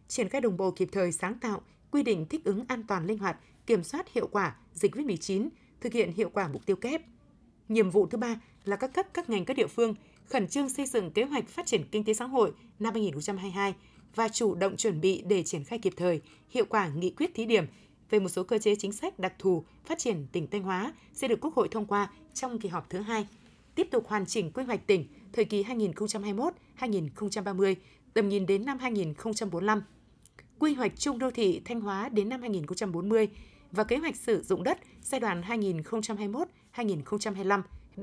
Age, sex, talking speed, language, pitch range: 20-39, female, 205 wpm, Vietnamese, 195-245 Hz